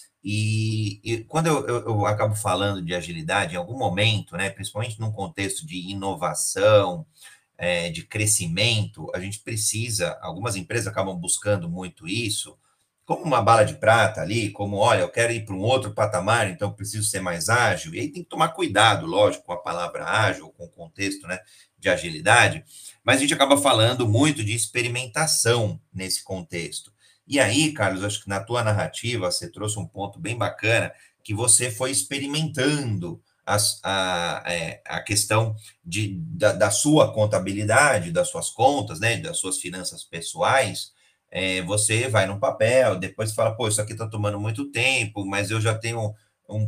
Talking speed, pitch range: 170 wpm, 100-120 Hz